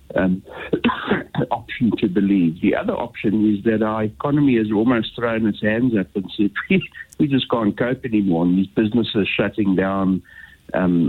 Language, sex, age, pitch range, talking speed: English, male, 60-79, 90-110 Hz, 160 wpm